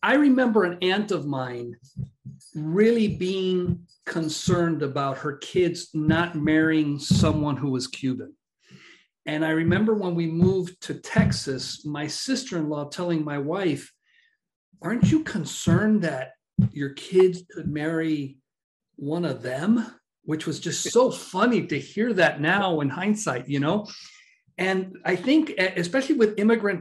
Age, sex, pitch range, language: 40-59, male, 155-195 Hz, English